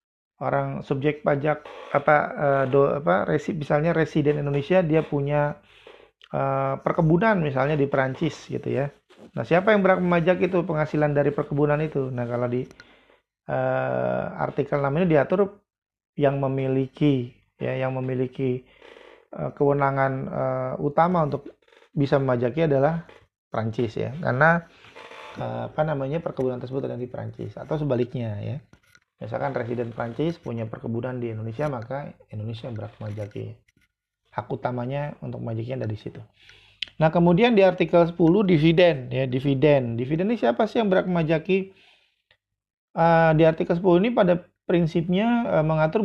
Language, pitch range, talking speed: Indonesian, 130-170 Hz, 135 wpm